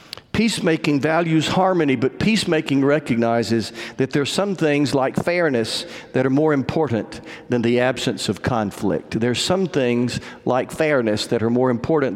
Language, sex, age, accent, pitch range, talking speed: English, male, 50-69, American, 120-165 Hz, 150 wpm